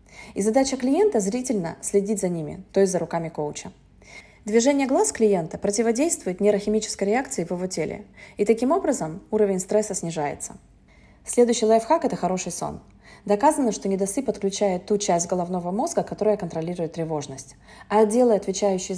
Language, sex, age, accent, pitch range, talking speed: Russian, female, 30-49, native, 180-225 Hz, 150 wpm